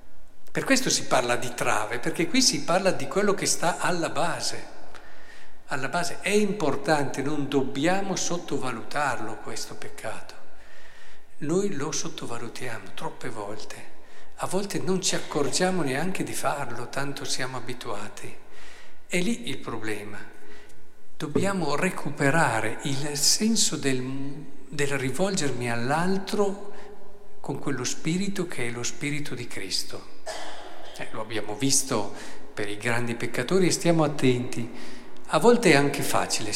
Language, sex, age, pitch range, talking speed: Italian, male, 50-69, 125-180 Hz, 130 wpm